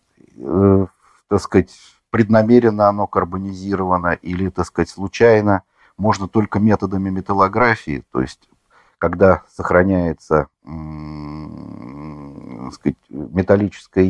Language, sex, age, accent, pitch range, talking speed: Russian, male, 50-69, native, 85-105 Hz, 60 wpm